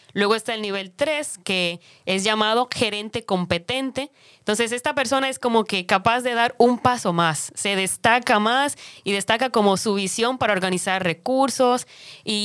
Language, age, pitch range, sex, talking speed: English, 20-39, 195-245 Hz, female, 165 wpm